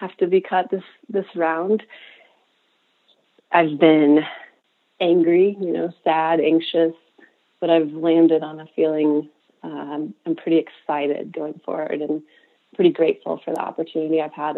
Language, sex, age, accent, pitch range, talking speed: English, female, 30-49, American, 155-180 Hz, 140 wpm